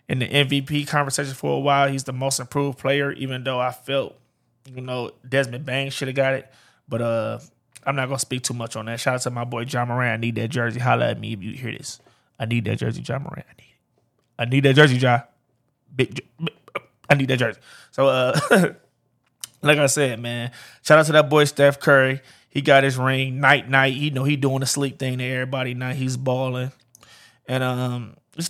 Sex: male